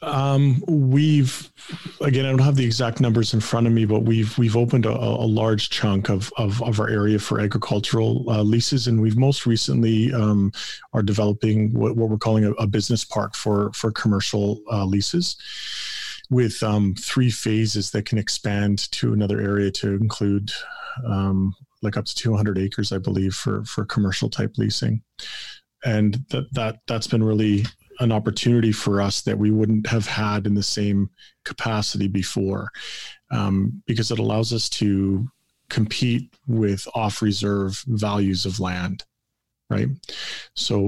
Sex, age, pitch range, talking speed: male, 40-59, 100-115 Hz, 160 wpm